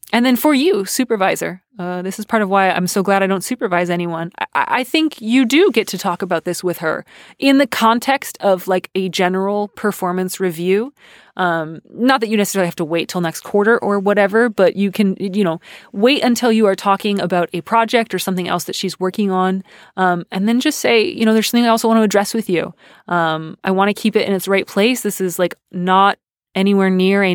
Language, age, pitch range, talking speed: English, 20-39, 165-200 Hz, 230 wpm